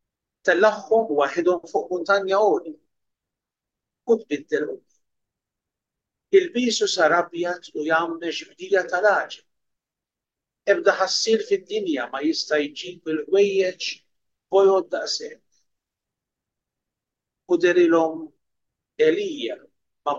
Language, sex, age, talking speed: English, male, 50-69, 75 wpm